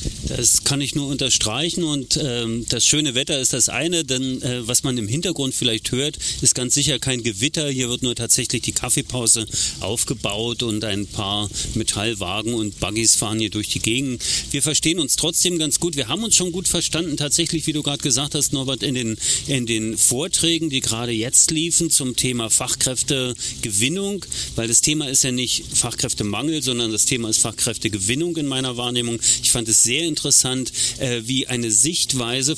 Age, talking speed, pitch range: 40-59, 180 wpm, 120-145 Hz